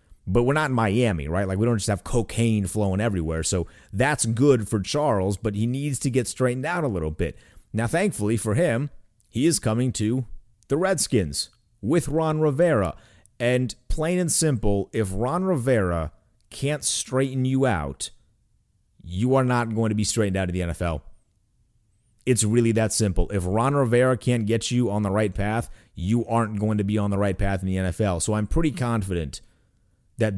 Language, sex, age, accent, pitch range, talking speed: English, male, 30-49, American, 95-120 Hz, 190 wpm